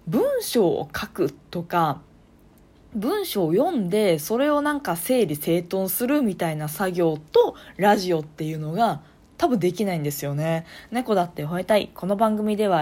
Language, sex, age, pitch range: Japanese, female, 20-39, 170-260 Hz